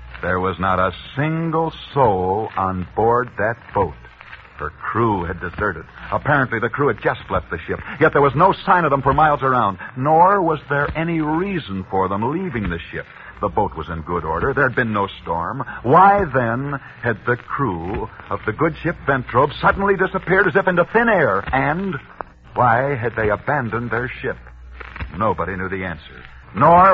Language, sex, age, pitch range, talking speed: English, male, 60-79, 100-155 Hz, 185 wpm